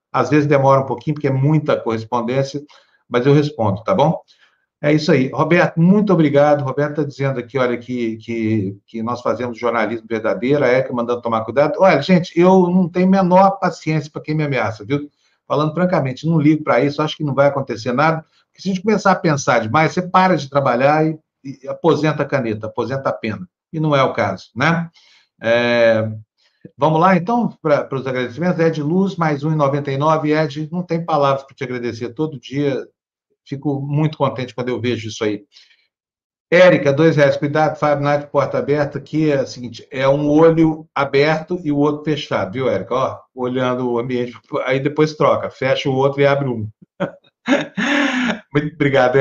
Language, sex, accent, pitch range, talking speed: Portuguese, male, Brazilian, 125-155 Hz, 185 wpm